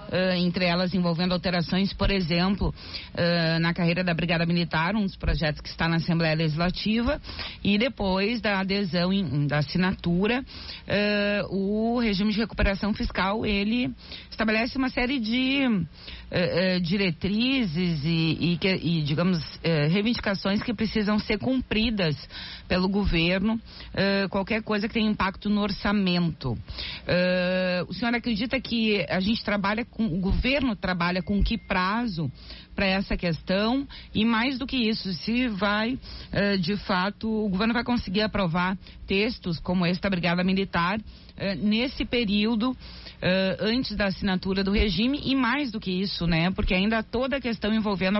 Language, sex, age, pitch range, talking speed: Portuguese, female, 40-59, 180-220 Hz, 150 wpm